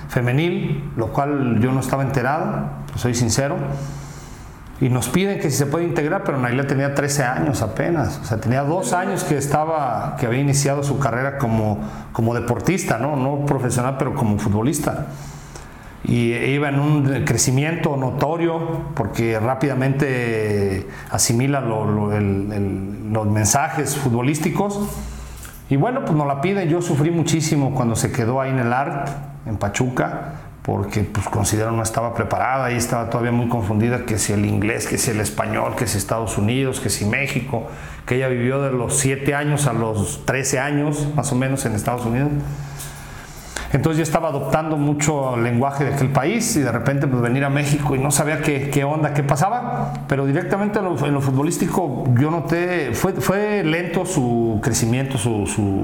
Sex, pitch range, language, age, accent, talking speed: male, 115-150 Hz, Spanish, 40-59, Mexican, 175 wpm